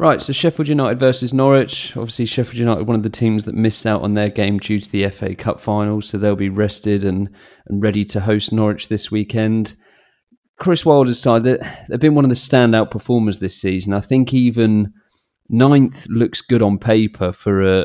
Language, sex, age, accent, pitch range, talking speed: English, male, 30-49, British, 100-110 Hz, 200 wpm